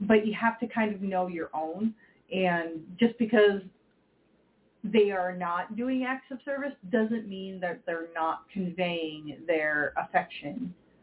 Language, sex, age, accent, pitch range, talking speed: English, female, 30-49, American, 160-210 Hz, 145 wpm